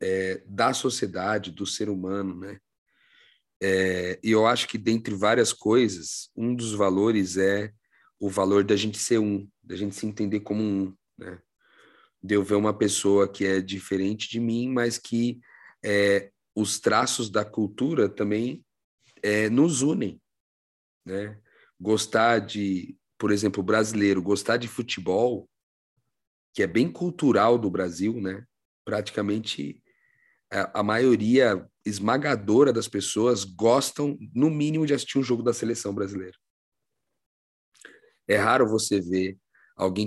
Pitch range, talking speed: 100-120 Hz, 135 wpm